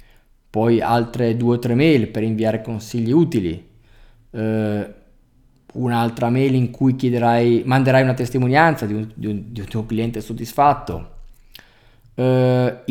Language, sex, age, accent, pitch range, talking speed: Italian, male, 20-39, native, 115-135 Hz, 135 wpm